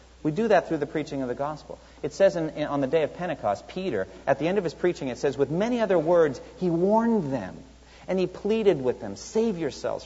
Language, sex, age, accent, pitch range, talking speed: English, male, 40-59, American, 115-175 Hz, 235 wpm